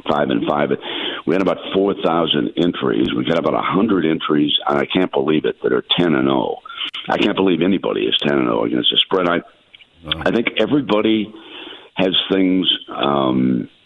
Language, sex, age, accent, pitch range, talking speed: English, male, 60-79, American, 75-95 Hz, 180 wpm